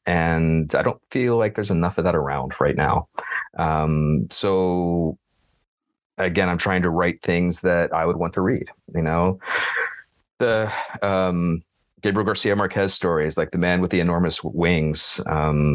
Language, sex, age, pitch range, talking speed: English, male, 30-49, 80-95 Hz, 160 wpm